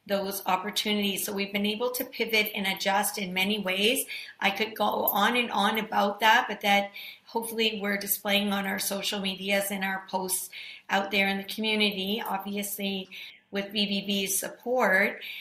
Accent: American